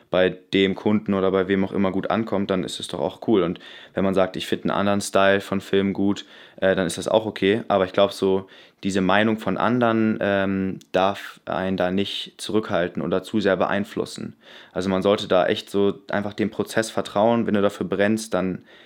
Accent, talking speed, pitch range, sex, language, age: German, 215 wpm, 95-100 Hz, male, German, 20-39